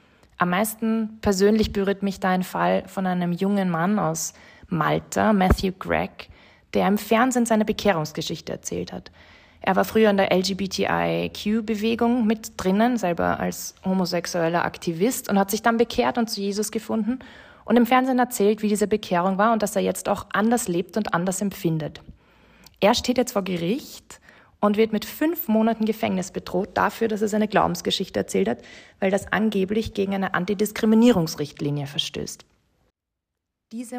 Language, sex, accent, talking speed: German, female, German, 155 wpm